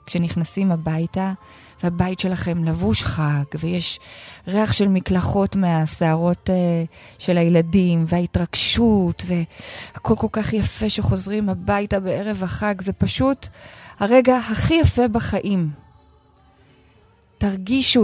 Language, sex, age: Hebrew, female, 20-39